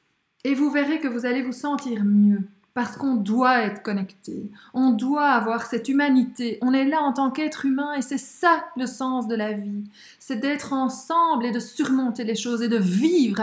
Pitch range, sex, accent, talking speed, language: 215-265 Hz, female, French, 200 wpm, French